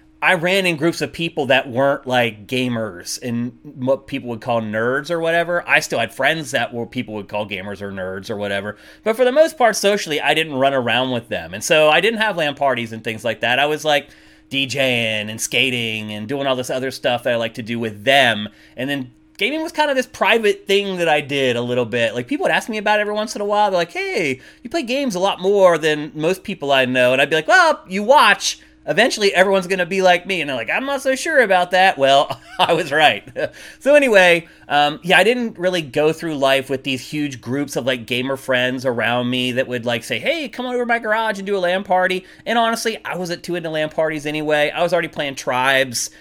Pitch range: 125-190 Hz